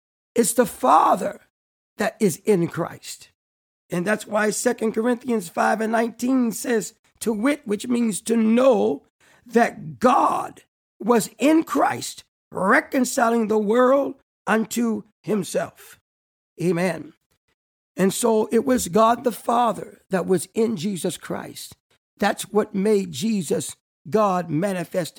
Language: English